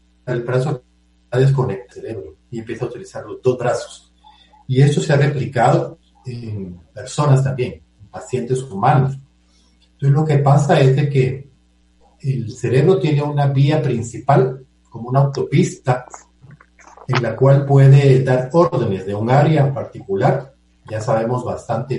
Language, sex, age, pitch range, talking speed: Spanish, male, 40-59, 100-140 Hz, 140 wpm